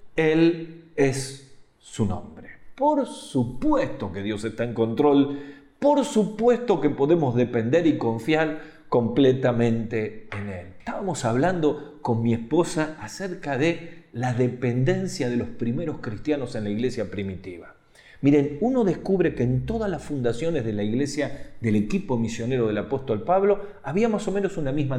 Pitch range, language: 115-175 Hz, Spanish